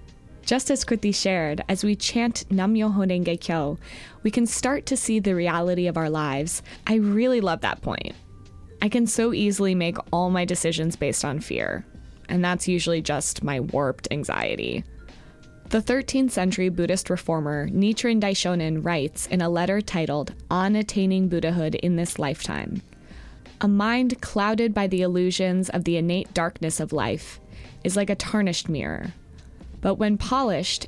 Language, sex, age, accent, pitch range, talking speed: English, female, 20-39, American, 165-210 Hz, 160 wpm